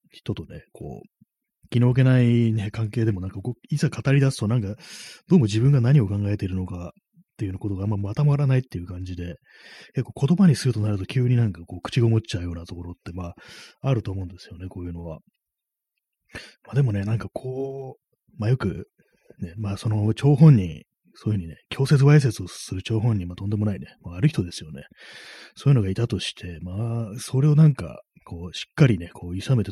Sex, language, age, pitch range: male, Japanese, 30-49, 95-130 Hz